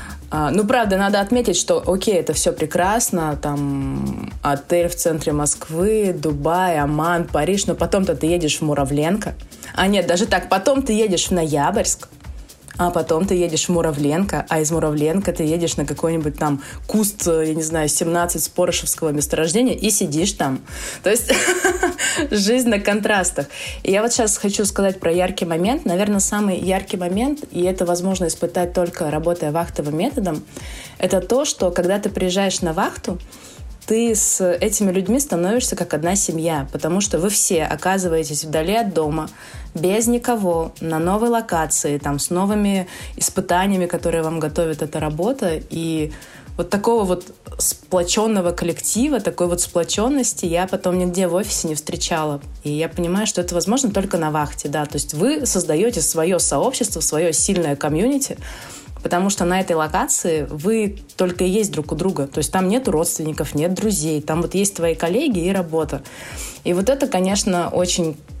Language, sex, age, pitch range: Russian, female, 20-39, 160-200 Hz